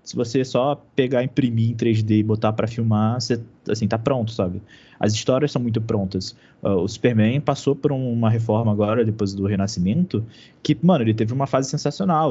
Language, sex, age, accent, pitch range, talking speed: Portuguese, male, 20-39, Brazilian, 105-135 Hz, 180 wpm